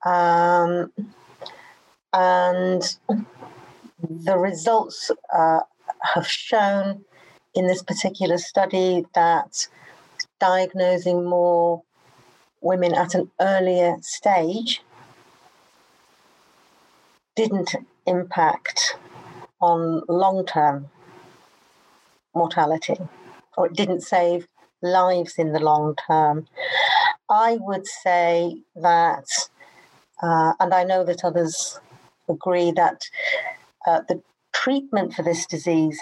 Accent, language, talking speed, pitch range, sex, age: British, English, 85 wpm, 170-195 Hz, female, 50-69